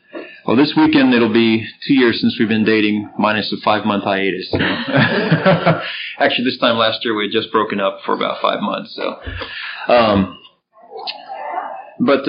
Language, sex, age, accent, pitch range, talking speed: English, male, 30-49, American, 110-145 Hz, 160 wpm